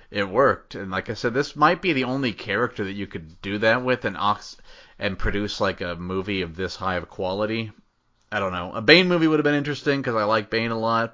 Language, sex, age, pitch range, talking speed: English, male, 30-49, 100-135 Hz, 250 wpm